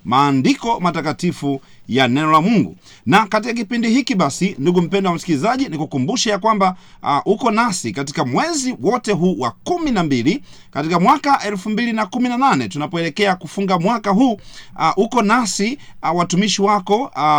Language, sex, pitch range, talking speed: Swahili, male, 155-210 Hz, 150 wpm